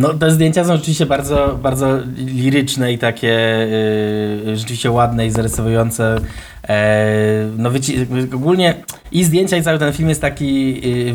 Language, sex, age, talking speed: Polish, male, 20-39, 150 wpm